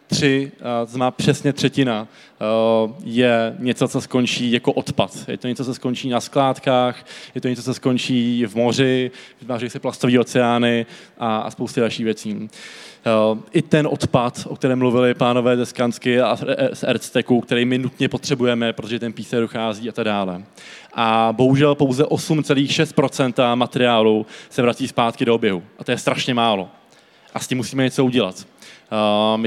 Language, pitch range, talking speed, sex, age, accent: Czech, 120-140 Hz, 155 wpm, male, 20-39, native